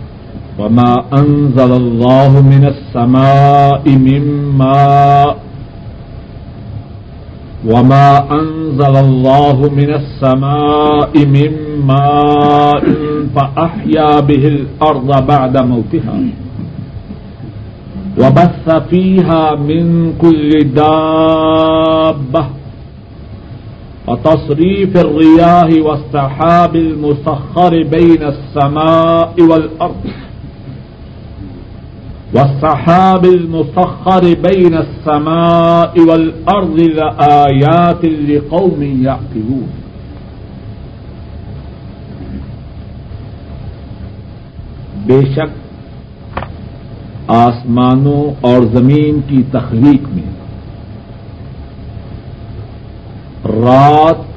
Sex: male